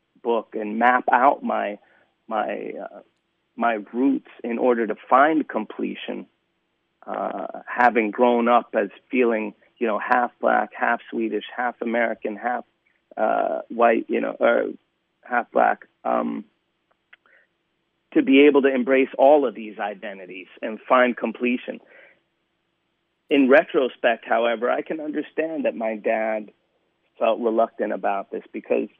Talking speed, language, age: 130 wpm, English, 30-49